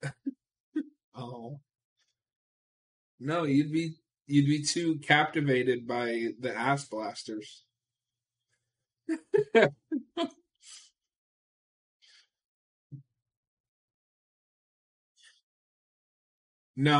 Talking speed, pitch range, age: 45 wpm, 120-145 Hz, 20-39